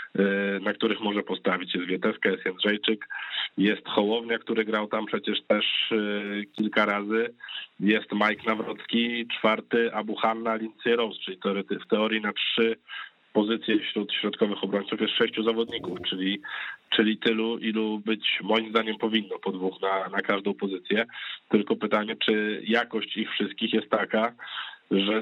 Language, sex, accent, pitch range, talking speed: Polish, male, native, 100-110 Hz, 145 wpm